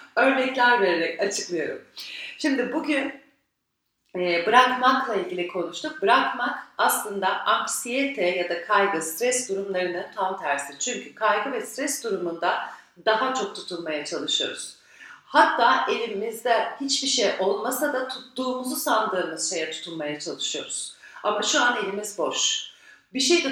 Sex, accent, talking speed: female, native, 115 wpm